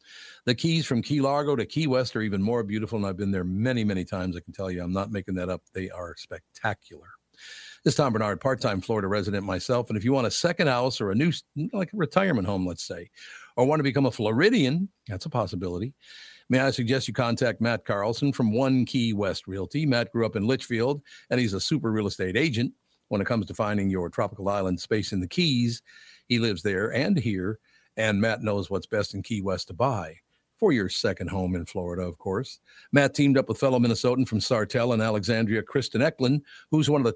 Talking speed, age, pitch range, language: 225 wpm, 50-69, 100-130 Hz, English